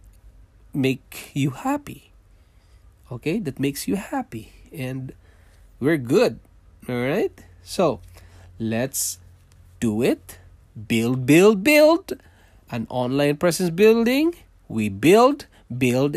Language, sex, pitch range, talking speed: English, male, 90-135 Hz, 100 wpm